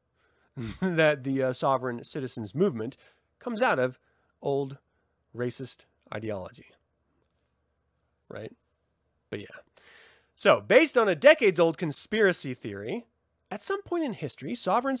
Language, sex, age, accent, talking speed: English, male, 30-49, American, 110 wpm